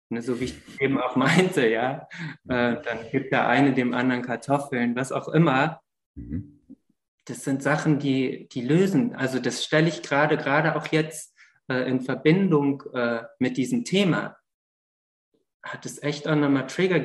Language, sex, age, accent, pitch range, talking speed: German, male, 20-39, German, 125-155 Hz, 160 wpm